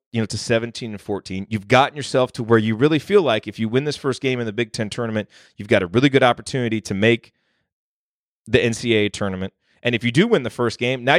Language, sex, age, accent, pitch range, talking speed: English, male, 30-49, American, 100-130 Hz, 245 wpm